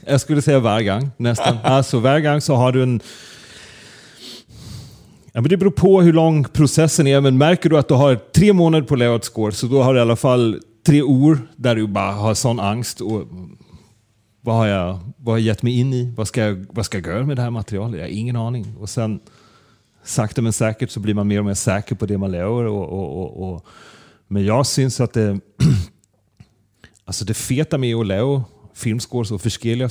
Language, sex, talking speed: Danish, male, 210 wpm